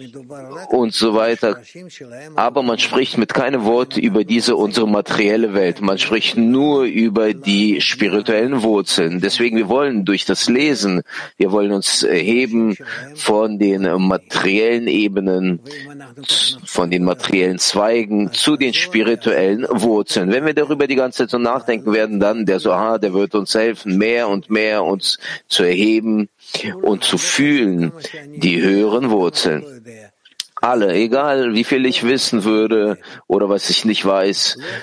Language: English